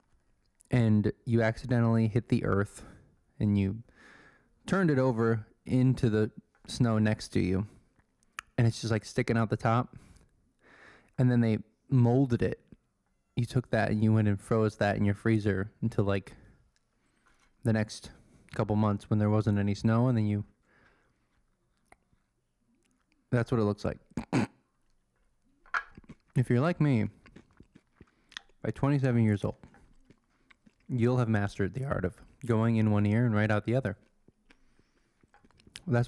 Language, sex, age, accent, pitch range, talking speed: English, male, 20-39, American, 105-125 Hz, 140 wpm